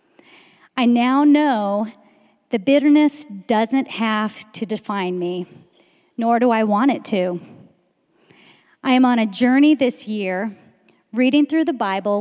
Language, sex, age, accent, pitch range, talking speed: English, female, 30-49, American, 200-260 Hz, 135 wpm